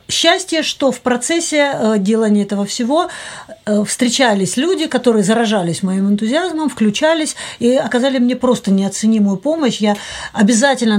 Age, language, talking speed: 50-69, Russian, 120 wpm